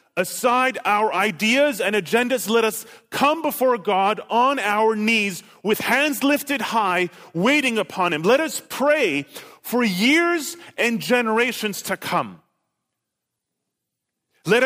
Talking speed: 125 wpm